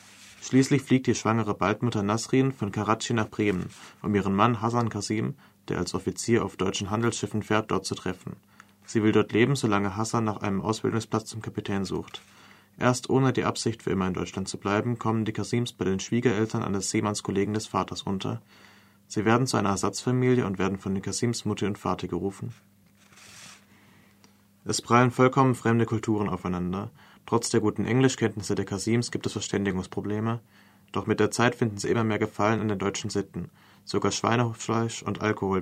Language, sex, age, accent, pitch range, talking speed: German, male, 30-49, German, 100-115 Hz, 175 wpm